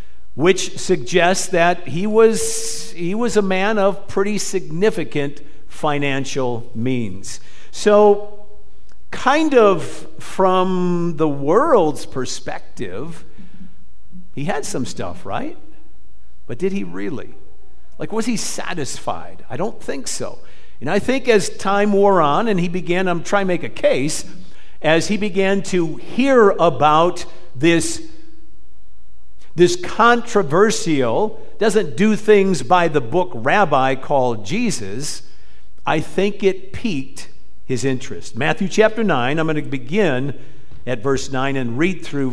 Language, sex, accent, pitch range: English, male, American, 125-195 Hz